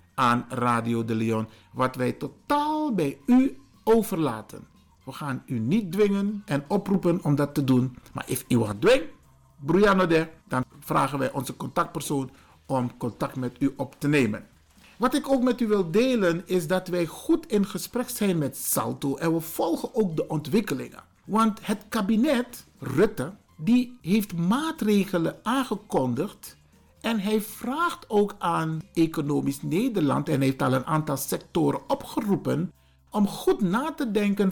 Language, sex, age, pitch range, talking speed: Dutch, male, 50-69, 145-235 Hz, 150 wpm